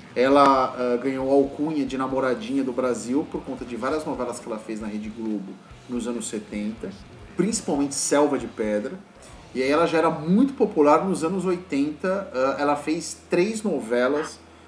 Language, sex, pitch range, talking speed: Portuguese, male, 120-155 Hz, 170 wpm